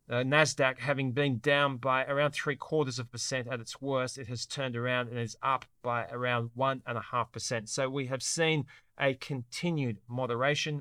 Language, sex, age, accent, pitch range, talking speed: English, male, 40-59, Australian, 120-140 Hz, 195 wpm